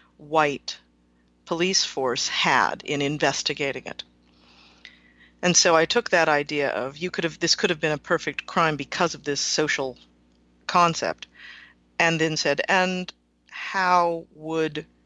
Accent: American